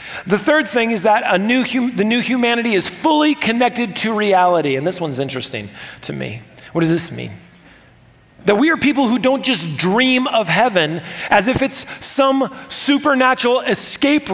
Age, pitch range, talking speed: 40-59, 155-215 Hz, 175 wpm